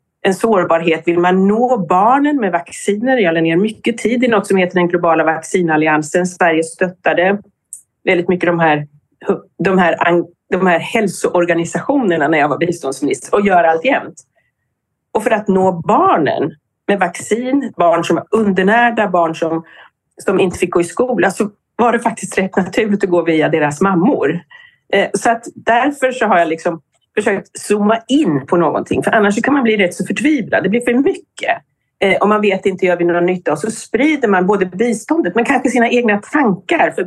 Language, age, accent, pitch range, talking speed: Swedish, 40-59, native, 170-230 Hz, 185 wpm